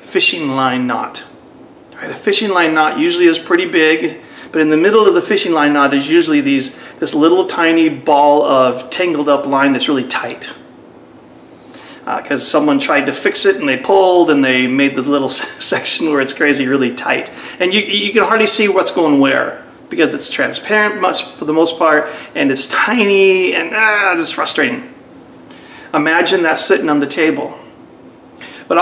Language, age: English, 30-49